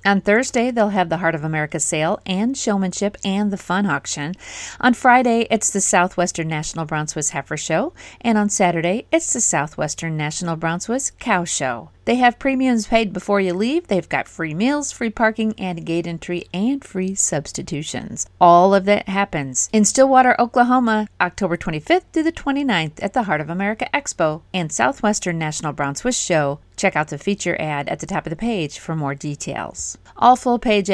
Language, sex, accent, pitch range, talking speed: English, female, American, 165-225 Hz, 185 wpm